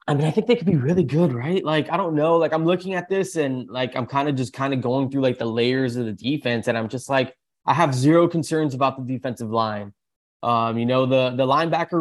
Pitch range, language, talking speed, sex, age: 115-140 Hz, English, 265 wpm, male, 20-39